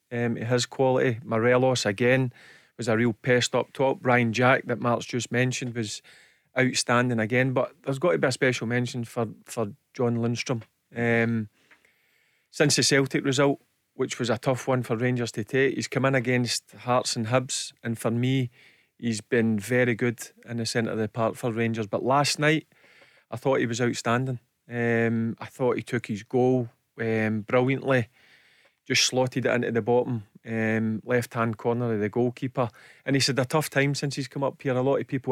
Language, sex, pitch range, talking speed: English, male, 115-130 Hz, 190 wpm